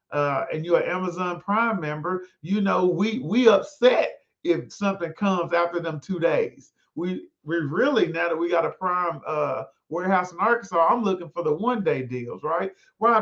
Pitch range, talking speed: 150-195 Hz, 185 wpm